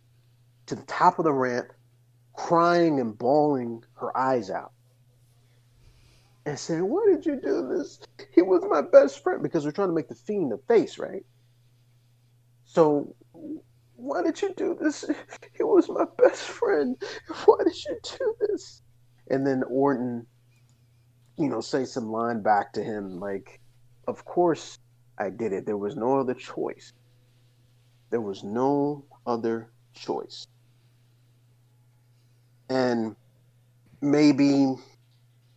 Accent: American